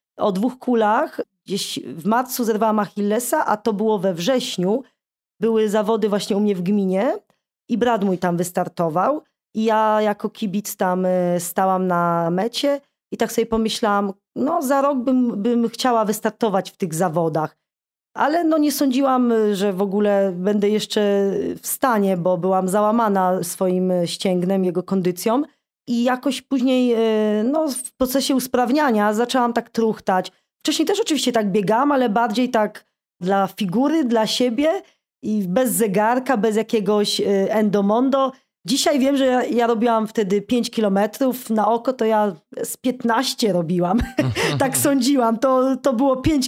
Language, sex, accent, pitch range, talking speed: Polish, female, native, 205-255 Hz, 150 wpm